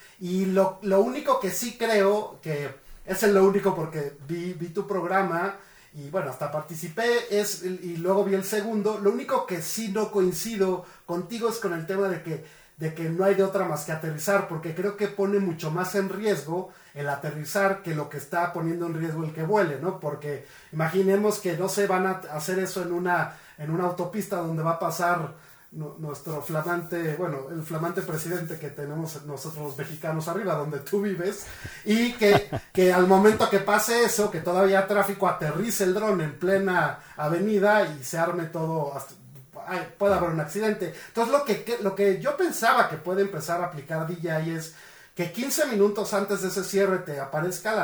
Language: Spanish